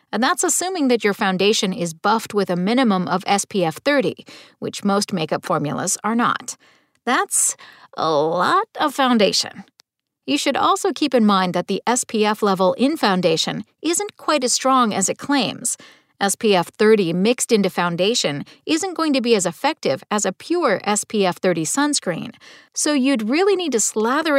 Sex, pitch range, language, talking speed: female, 195-265 Hz, English, 165 wpm